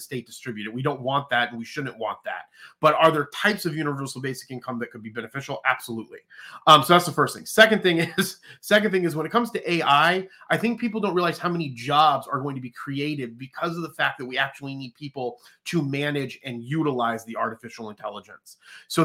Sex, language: male, English